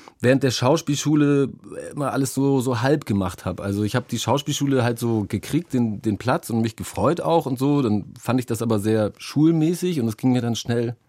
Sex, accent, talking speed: male, German, 215 wpm